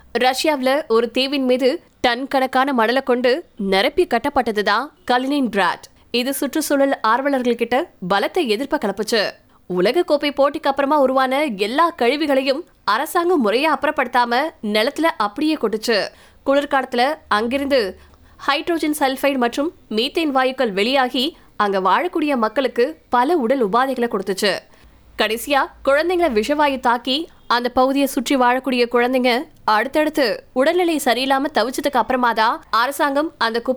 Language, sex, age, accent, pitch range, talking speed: Tamil, female, 20-39, native, 235-290 Hz, 90 wpm